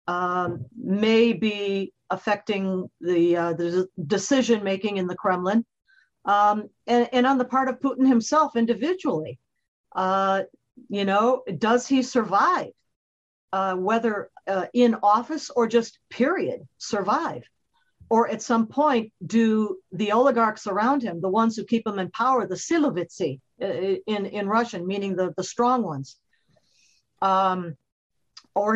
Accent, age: American, 50-69